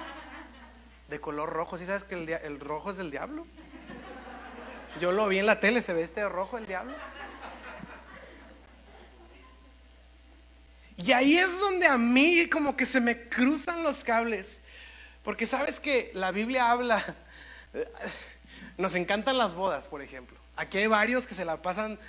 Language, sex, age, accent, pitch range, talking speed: Spanish, male, 30-49, Mexican, 185-255 Hz, 160 wpm